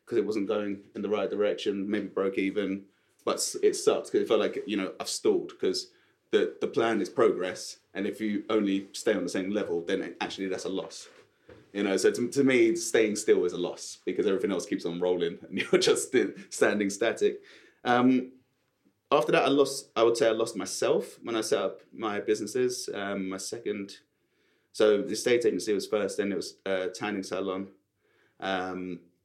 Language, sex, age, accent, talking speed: English, male, 30-49, British, 200 wpm